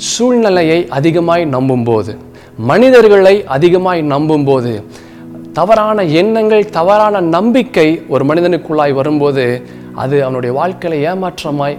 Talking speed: 95 wpm